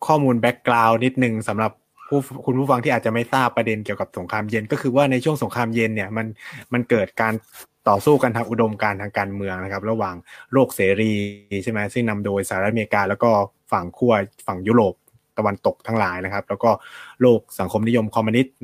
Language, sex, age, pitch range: Thai, male, 20-39, 110-135 Hz